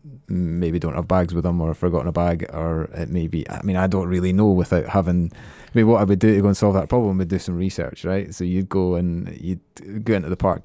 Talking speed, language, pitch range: 265 wpm, English, 85-95 Hz